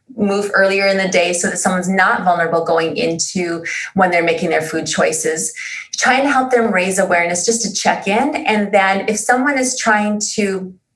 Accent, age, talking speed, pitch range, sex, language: American, 30-49, 190 wpm, 180-235 Hz, female, English